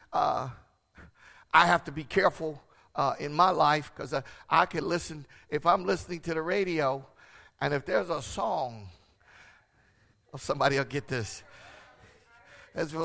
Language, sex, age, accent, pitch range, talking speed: English, male, 50-69, American, 145-190 Hz, 145 wpm